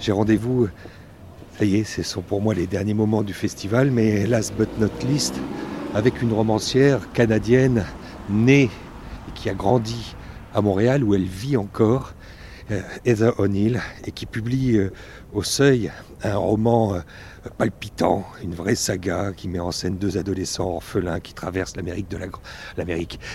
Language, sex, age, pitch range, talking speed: French, male, 60-79, 95-115 Hz, 155 wpm